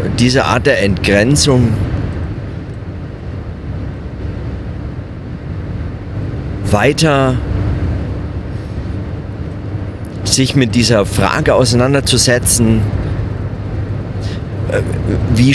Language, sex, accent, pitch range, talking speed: German, male, German, 100-125 Hz, 40 wpm